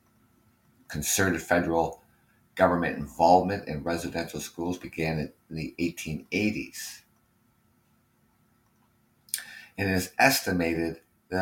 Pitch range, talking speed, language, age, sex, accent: 75-95 Hz, 80 wpm, English, 50-69, male, American